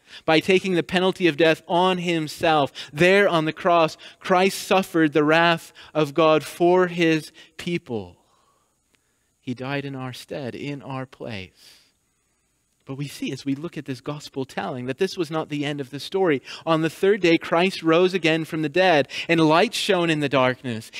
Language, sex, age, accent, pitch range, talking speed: English, male, 30-49, American, 120-160 Hz, 185 wpm